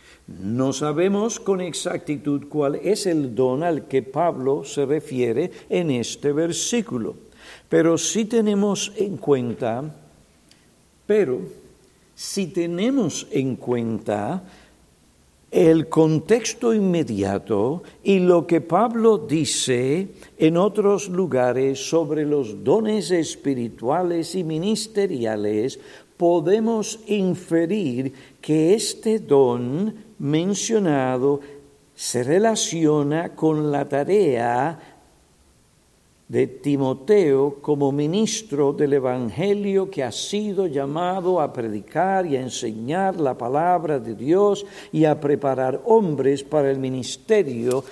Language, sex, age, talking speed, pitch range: Spanish, male, 60-79, 100 wpm, 135-190 Hz